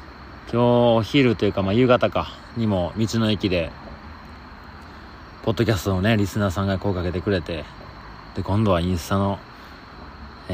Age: 40-59